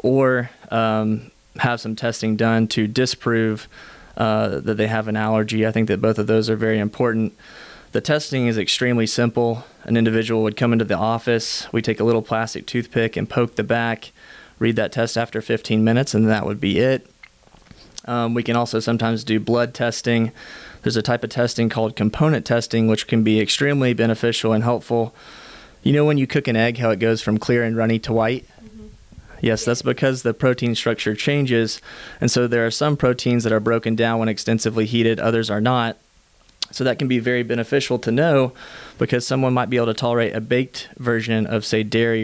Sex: male